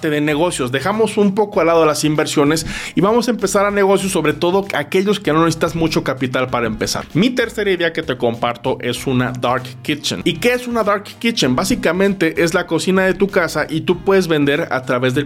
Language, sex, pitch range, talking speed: Spanish, male, 135-185 Hz, 215 wpm